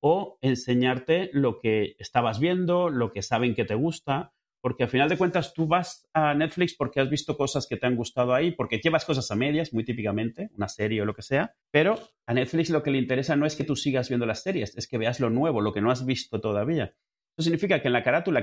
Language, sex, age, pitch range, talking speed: Spanish, male, 30-49, 115-155 Hz, 245 wpm